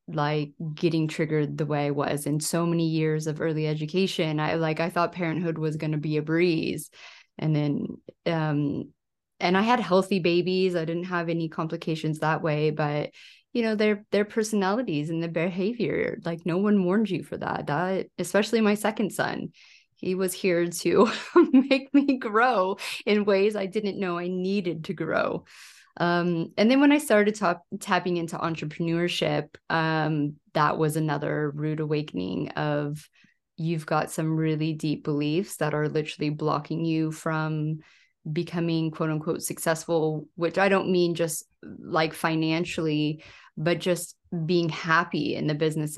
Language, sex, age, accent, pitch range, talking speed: English, female, 30-49, American, 155-180 Hz, 160 wpm